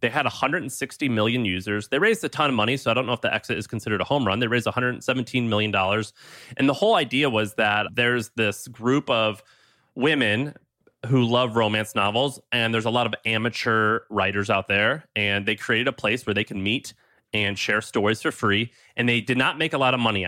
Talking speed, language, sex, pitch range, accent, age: 220 wpm, English, male, 105-130 Hz, American, 30-49